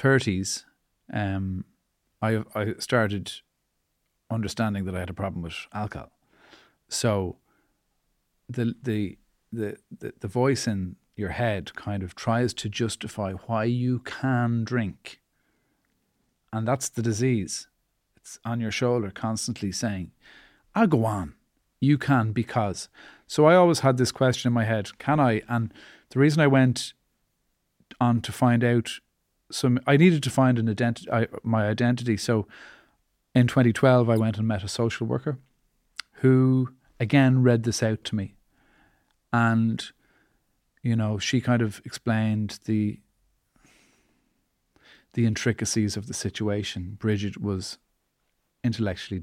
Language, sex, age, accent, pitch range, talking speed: English, male, 40-59, Irish, 105-125 Hz, 135 wpm